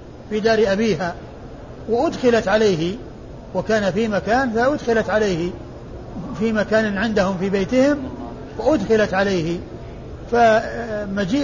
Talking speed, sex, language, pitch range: 95 wpm, male, Arabic, 185-230 Hz